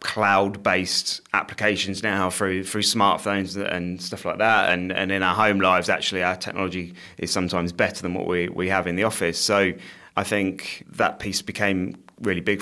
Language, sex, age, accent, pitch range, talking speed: English, male, 30-49, British, 90-105 Hz, 180 wpm